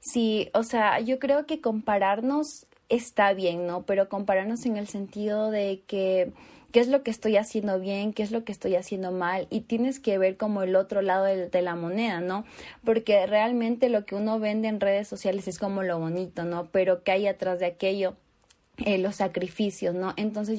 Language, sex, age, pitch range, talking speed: Spanish, female, 20-39, 185-215 Hz, 200 wpm